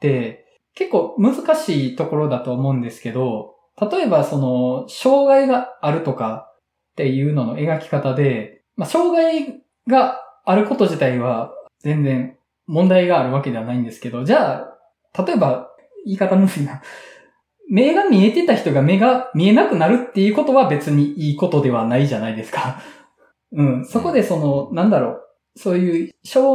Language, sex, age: Japanese, male, 20-39